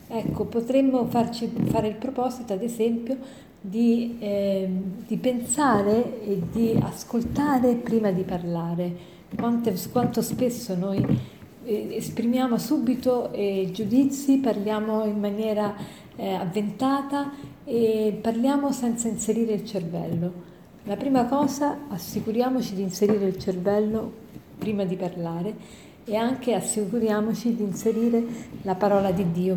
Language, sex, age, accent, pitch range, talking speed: Italian, female, 40-59, native, 190-235 Hz, 115 wpm